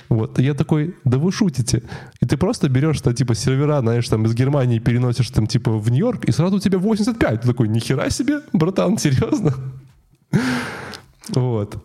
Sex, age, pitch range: male, 20-39, 115-145 Hz